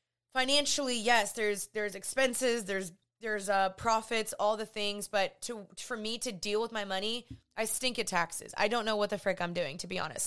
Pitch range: 190-225 Hz